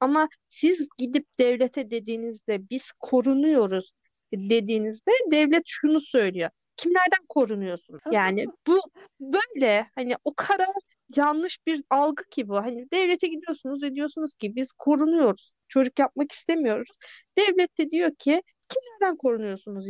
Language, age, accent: Turkish, 40-59, native